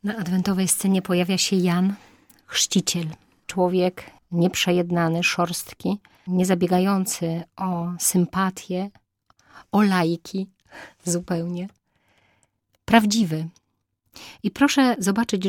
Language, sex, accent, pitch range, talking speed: Polish, female, native, 165-195 Hz, 80 wpm